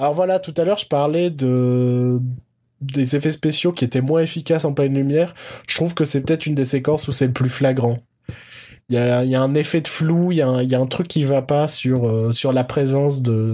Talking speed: 240 wpm